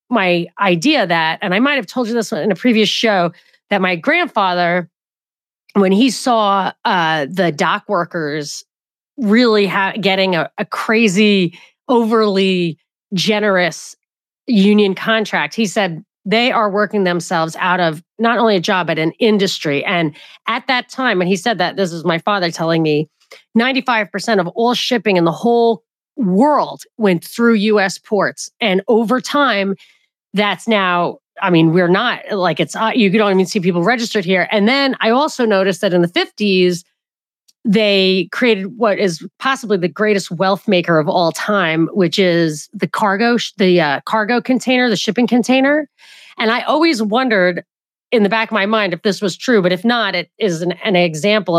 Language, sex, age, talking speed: English, female, 30-49, 170 wpm